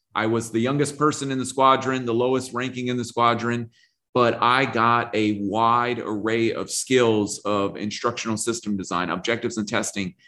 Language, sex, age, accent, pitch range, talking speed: English, male, 30-49, American, 105-125 Hz, 170 wpm